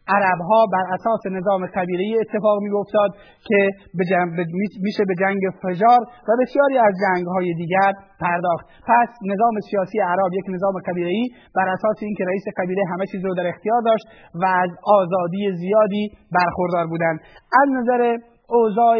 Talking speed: 155 wpm